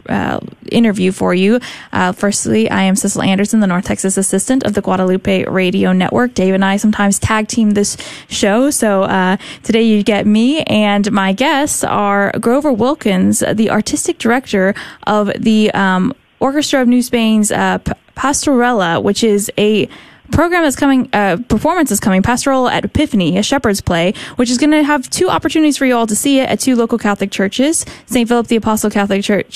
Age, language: 10-29, English